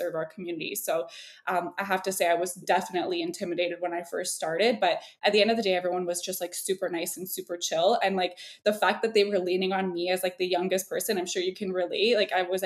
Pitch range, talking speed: 180-210 Hz, 265 wpm